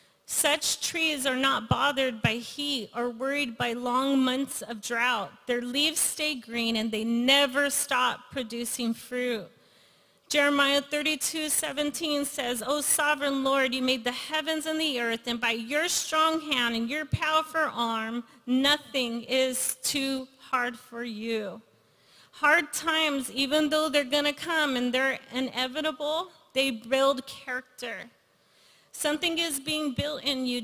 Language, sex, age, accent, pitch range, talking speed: English, female, 30-49, American, 245-290 Hz, 145 wpm